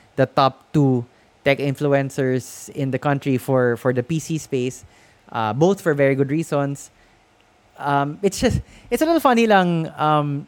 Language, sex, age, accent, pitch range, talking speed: English, male, 20-39, Filipino, 130-180 Hz, 160 wpm